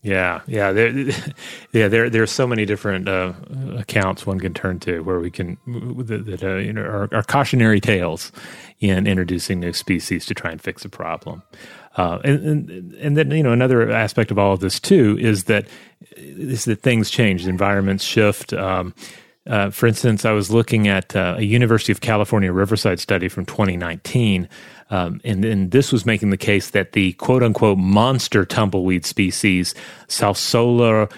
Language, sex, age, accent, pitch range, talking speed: English, male, 30-49, American, 95-115 Hz, 180 wpm